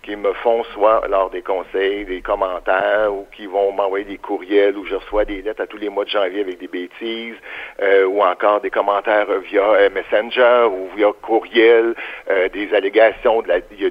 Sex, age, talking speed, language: male, 60-79, 205 wpm, French